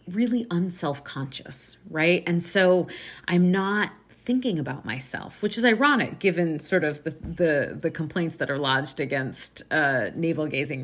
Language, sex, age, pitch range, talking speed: English, female, 30-49, 150-185 Hz, 145 wpm